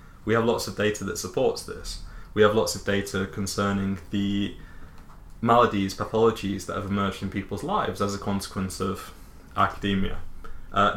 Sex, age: male, 20-39